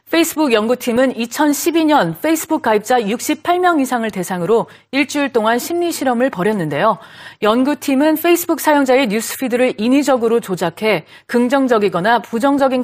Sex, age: female, 40-59